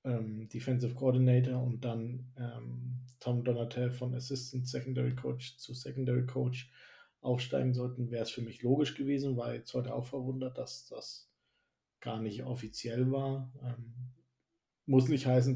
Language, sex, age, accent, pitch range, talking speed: German, male, 50-69, German, 115-125 Hz, 145 wpm